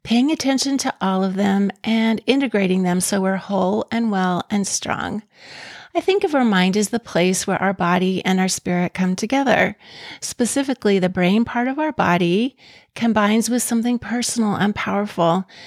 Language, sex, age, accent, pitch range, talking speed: English, female, 40-59, American, 190-230 Hz, 170 wpm